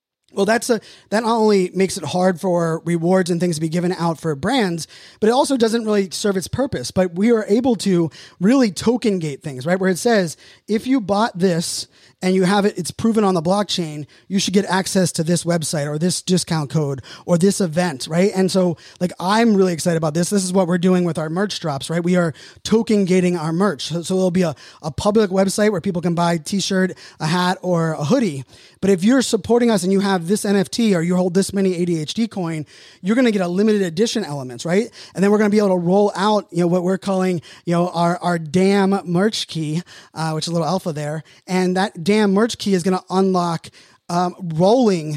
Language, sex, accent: English, male, American